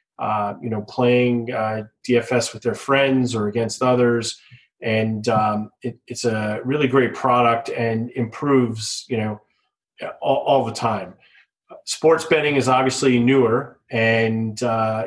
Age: 30-49